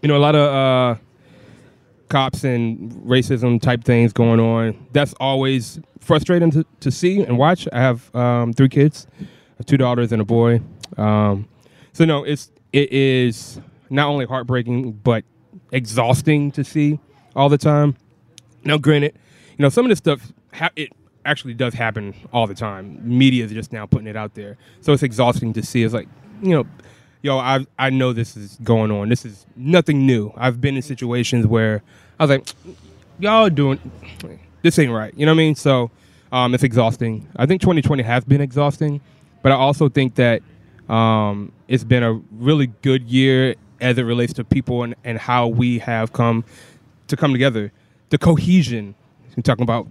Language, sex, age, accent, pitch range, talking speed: English, male, 20-39, American, 115-140 Hz, 180 wpm